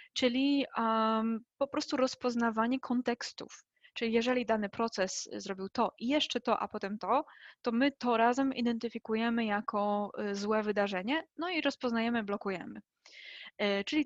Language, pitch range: Polish, 205-245 Hz